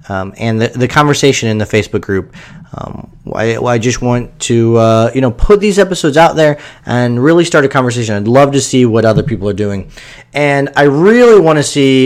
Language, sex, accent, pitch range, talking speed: English, male, American, 115-150 Hz, 220 wpm